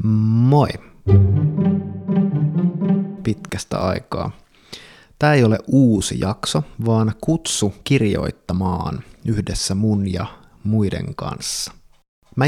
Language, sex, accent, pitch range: Finnish, male, native, 95-120 Hz